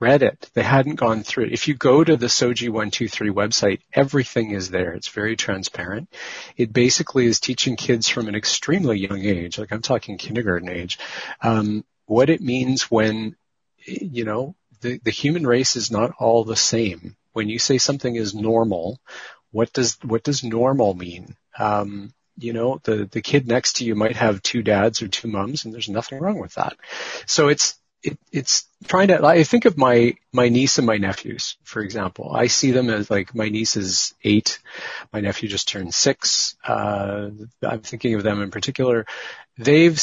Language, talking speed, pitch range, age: English, 190 wpm, 110-130 Hz, 40-59